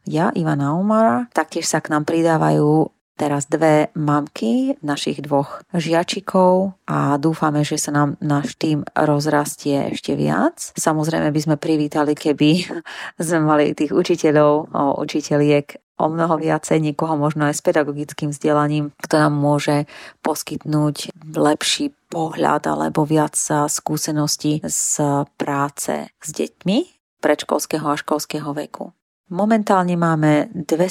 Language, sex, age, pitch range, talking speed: Slovak, female, 30-49, 150-170 Hz, 120 wpm